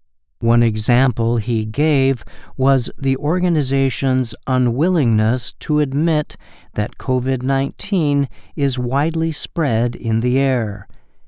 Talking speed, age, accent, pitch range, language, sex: 95 wpm, 50-69, American, 110-140 Hz, English, male